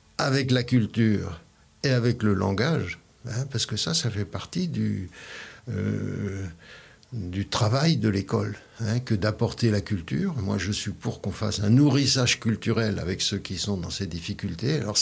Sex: male